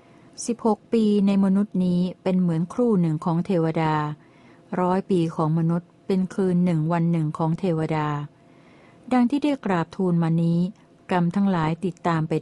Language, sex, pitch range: Thai, female, 165-195 Hz